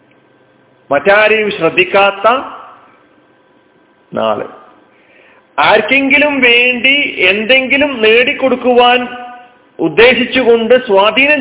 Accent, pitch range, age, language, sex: native, 145-235 Hz, 40-59, Malayalam, male